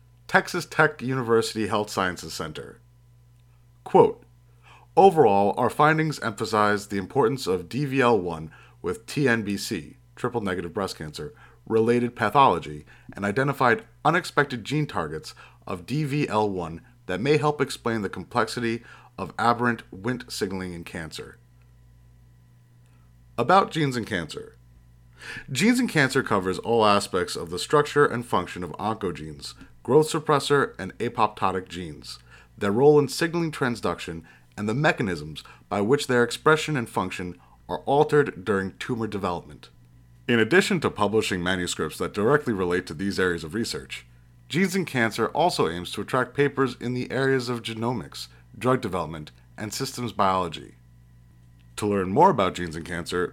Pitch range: 85-130 Hz